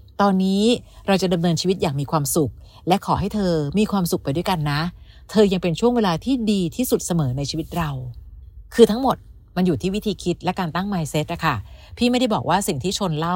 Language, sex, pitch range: Thai, female, 150-190 Hz